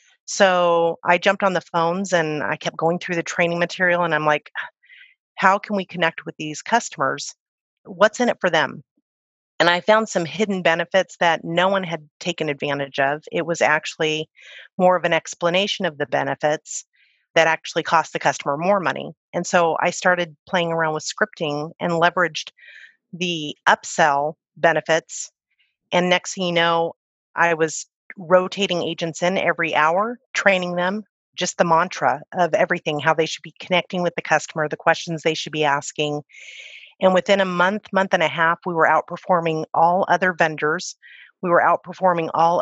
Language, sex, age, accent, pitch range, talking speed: English, female, 30-49, American, 160-180 Hz, 175 wpm